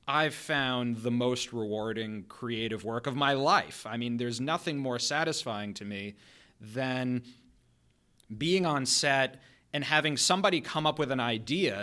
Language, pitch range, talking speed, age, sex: English, 120-155 Hz, 150 wpm, 30-49, male